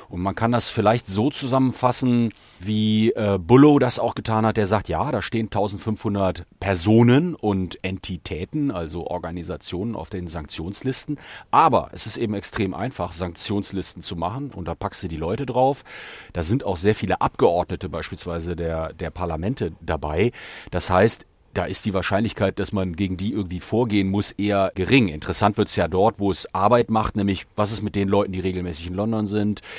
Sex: male